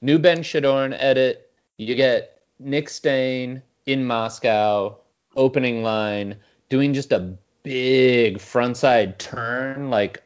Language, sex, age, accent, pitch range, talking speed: English, male, 30-49, American, 105-135 Hz, 115 wpm